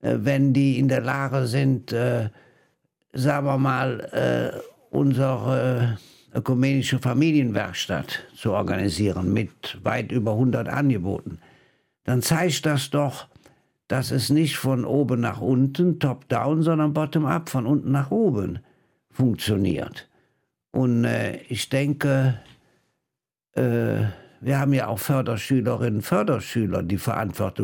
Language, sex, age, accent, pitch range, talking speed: German, male, 60-79, German, 110-135 Hz, 120 wpm